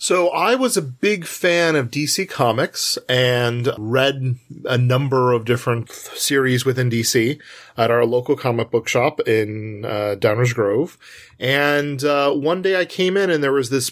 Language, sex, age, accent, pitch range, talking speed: English, male, 30-49, American, 115-145 Hz, 170 wpm